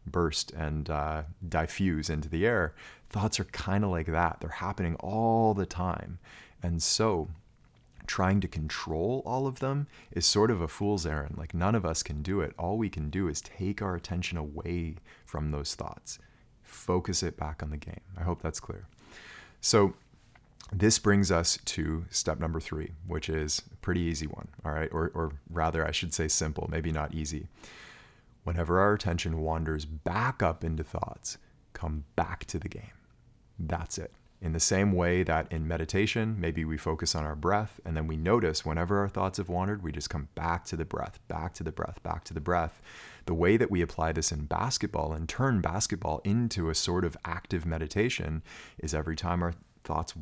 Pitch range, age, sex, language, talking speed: 80-100 Hz, 30-49, male, English, 190 wpm